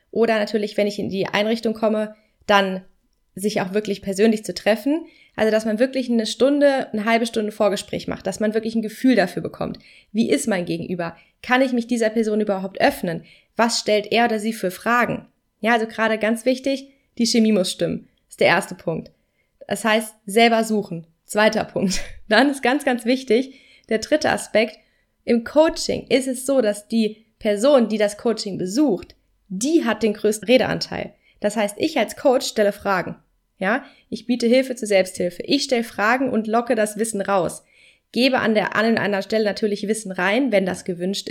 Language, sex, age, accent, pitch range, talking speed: German, female, 20-39, German, 210-260 Hz, 190 wpm